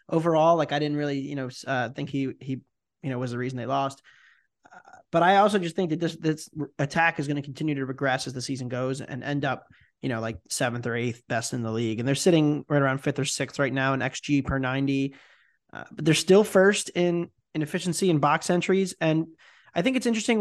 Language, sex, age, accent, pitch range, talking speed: English, male, 20-39, American, 135-155 Hz, 240 wpm